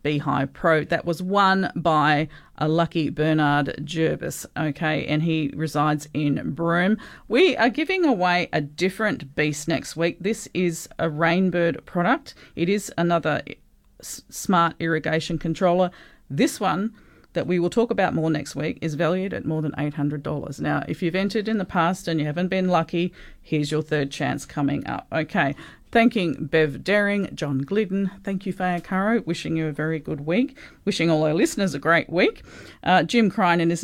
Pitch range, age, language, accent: 160-205 Hz, 40-59, English, Australian